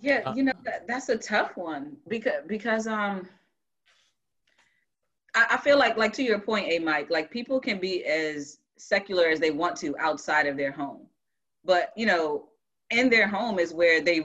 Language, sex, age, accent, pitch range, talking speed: English, female, 30-49, American, 150-215 Hz, 185 wpm